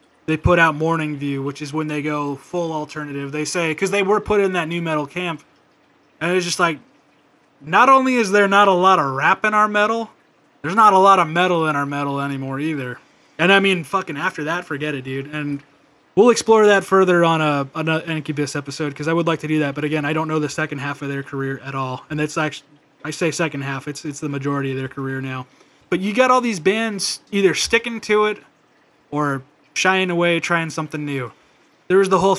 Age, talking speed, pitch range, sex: 20-39, 230 wpm, 145-190 Hz, male